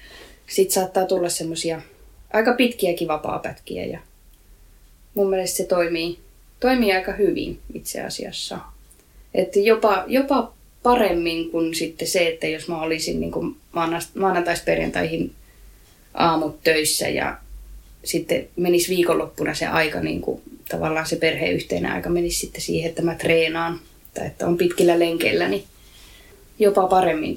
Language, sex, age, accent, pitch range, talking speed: Finnish, female, 20-39, native, 160-185 Hz, 125 wpm